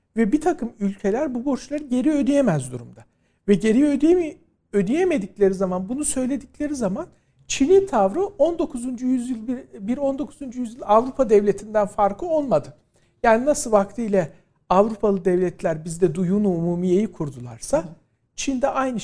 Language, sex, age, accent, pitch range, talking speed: Turkish, male, 60-79, native, 190-265 Hz, 125 wpm